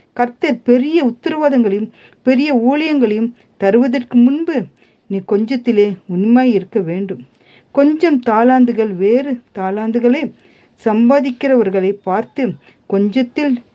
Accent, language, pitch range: native, Tamil, 195-255 Hz